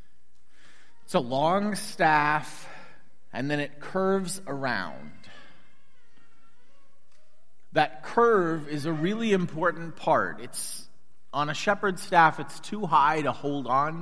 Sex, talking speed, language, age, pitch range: male, 120 wpm, English, 30-49, 130-180 Hz